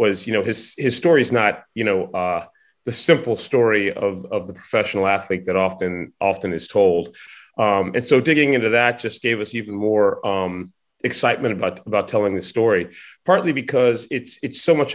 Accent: American